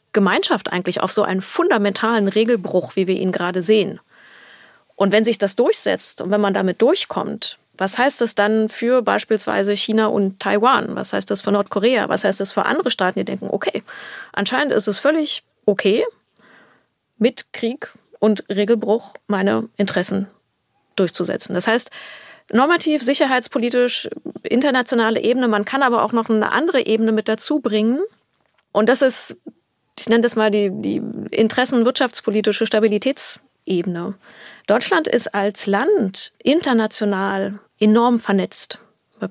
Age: 30-49